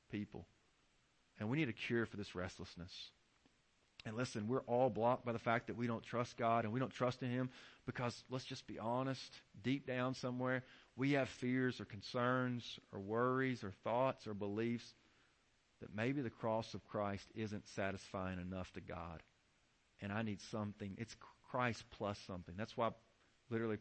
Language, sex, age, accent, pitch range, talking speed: English, male, 40-59, American, 105-125 Hz, 175 wpm